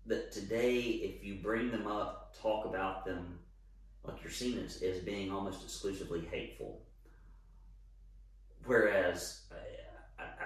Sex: male